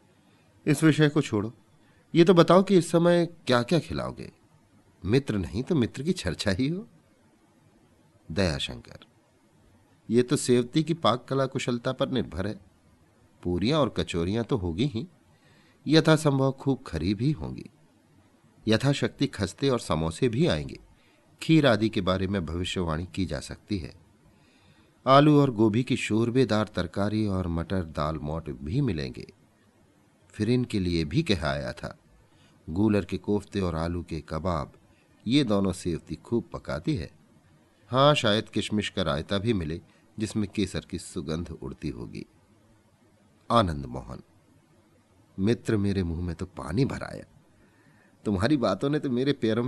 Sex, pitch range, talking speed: male, 85-125 Hz, 145 wpm